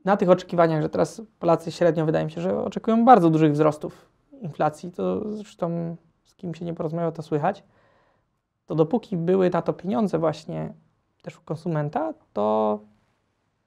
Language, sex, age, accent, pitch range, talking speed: Polish, male, 20-39, native, 155-180 Hz, 160 wpm